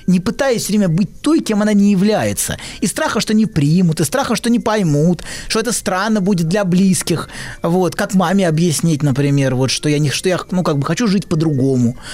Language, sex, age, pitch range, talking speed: Russian, male, 20-39, 160-225 Hz, 210 wpm